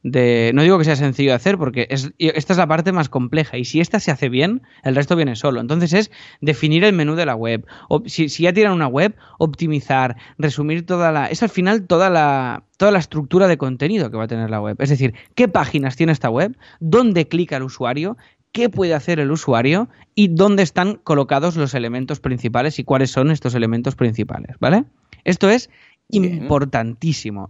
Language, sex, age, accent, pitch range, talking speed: Spanish, male, 20-39, Spanish, 130-180 Hz, 195 wpm